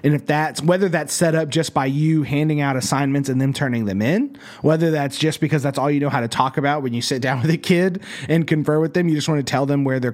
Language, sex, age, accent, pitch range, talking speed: English, male, 30-49, American, 120-185 Hz, 290 wpm